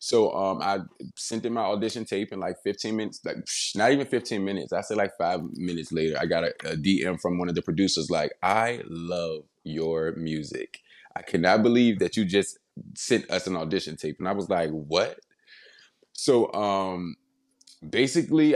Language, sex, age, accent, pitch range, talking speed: English, male, 20-39, American, 95-120 Hz, 190 wpm